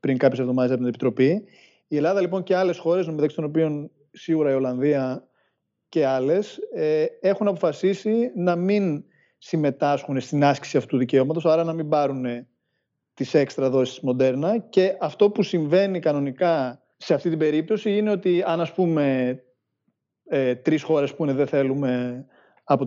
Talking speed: 155 wpm